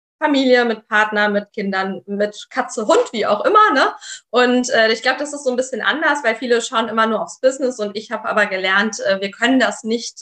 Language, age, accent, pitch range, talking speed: German, 20-39, German, 210-255 Hz, 230 wpm